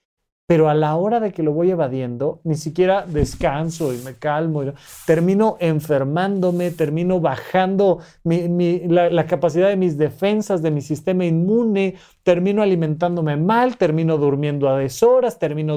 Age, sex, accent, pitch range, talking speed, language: 40-59, male, Mexican, 155-195 Hz, 150 wpm, Spanish